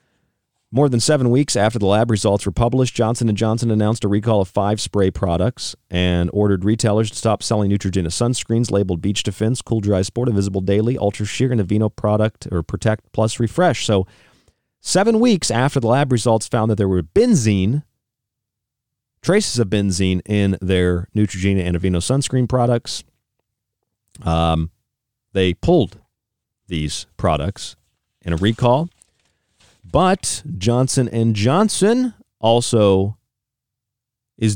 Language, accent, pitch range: English, American, 90-120 Hz